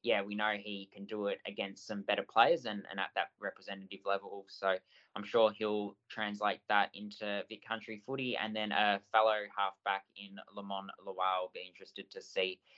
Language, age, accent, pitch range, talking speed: English, 10-29, Australian, 95-105 Hz, 185 wpm